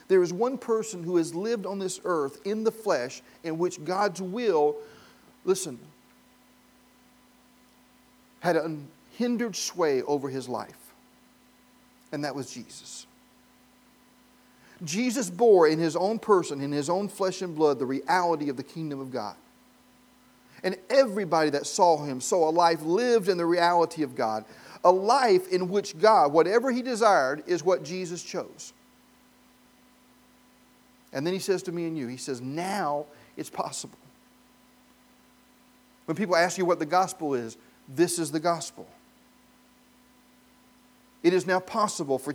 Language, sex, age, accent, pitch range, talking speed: English, male, 40-59, American, 150-220 Hz, 145 wpm